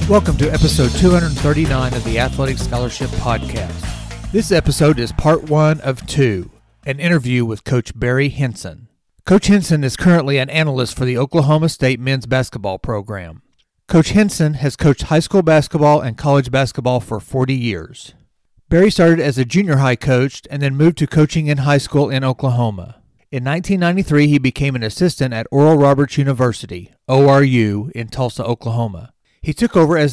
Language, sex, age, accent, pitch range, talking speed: English, male, 40-59, American, 120-150 Hz, 165 wpm